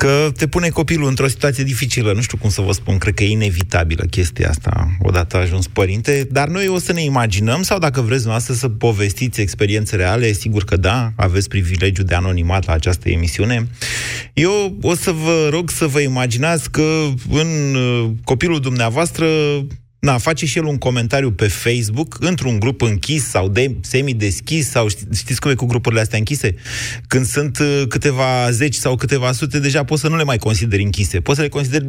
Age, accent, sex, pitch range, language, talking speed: 30-49, native, male, 110-150 Hz, Romanian, 190 wpm